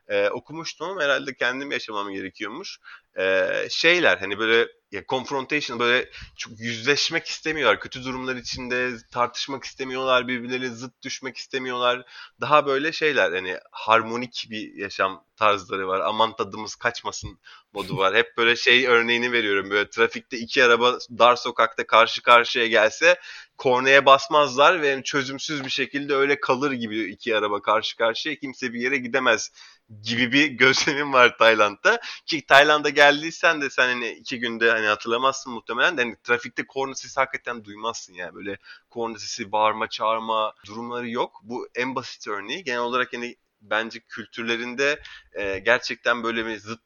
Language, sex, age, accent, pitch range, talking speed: Turkish, male, 30-49, native, 115-135 Hz, 150 wpm